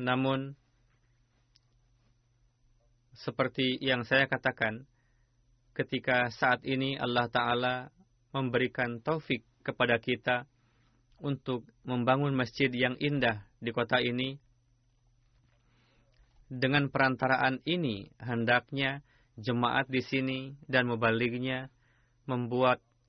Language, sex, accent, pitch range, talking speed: Indonesian, male, native, 120-130 Hz, 85 wpm